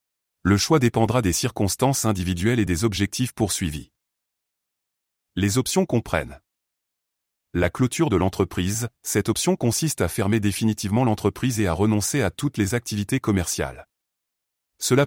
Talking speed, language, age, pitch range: 130 wpm, French, 30-49, 95-125 Hz